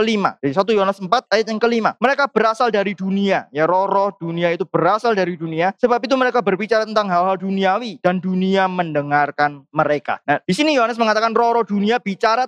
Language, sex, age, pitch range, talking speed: Indonesian, male, 20-39, 160-210 Hz, 185 wpm